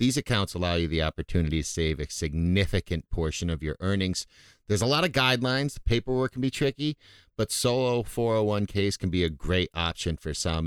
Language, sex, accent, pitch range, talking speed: English, male, American, 85-105 Hz, 185 wpm